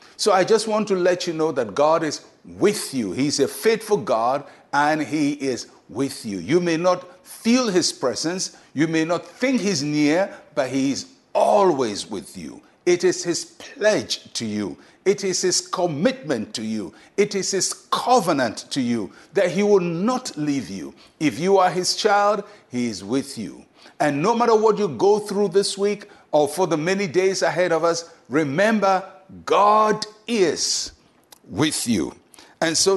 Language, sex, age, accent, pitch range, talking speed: English, male, 60-79, Nigerian, 150-205 Hz, 175 wpm